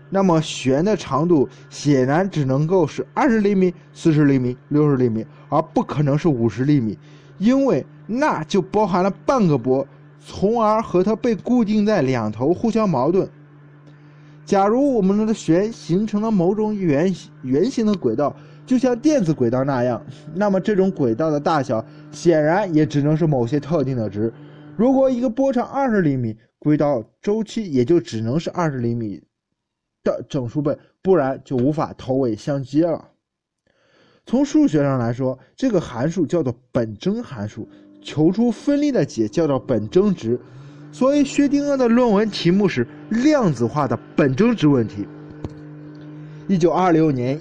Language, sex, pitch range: Chinese, male, 140-200 Hz